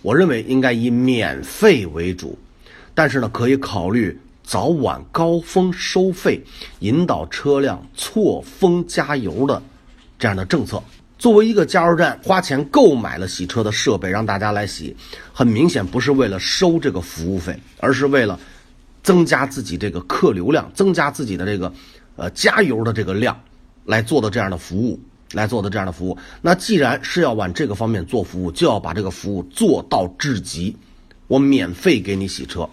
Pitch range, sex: 100-140 Hz, male